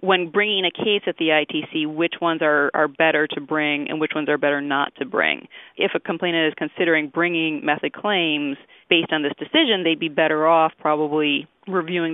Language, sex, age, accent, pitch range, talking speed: English, female, 30-49, American, 150-170 Hz, 200 wpm